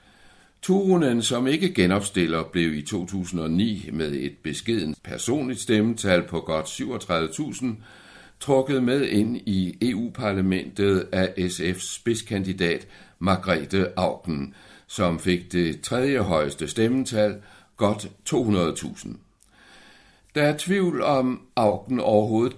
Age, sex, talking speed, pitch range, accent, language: 60-79, male, 105 wpm, 85-105 Hz, native, Danish